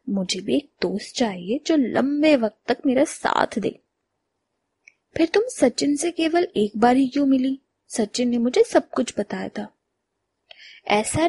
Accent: native